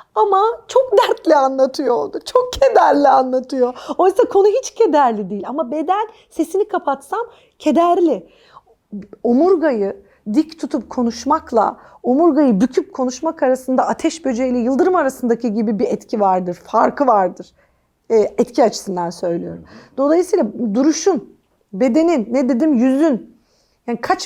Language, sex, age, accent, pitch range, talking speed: Turkish, female, 40-59, native, 235-325 Hz, 120 wpm